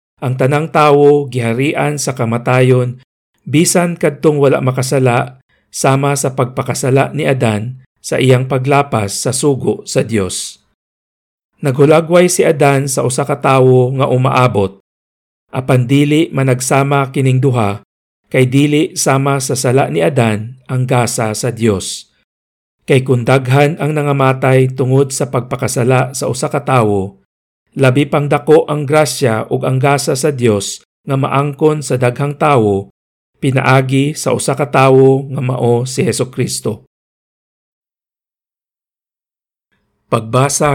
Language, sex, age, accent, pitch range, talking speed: Filipino, male, 50-69, native, 120-145 Hz, 115 wpm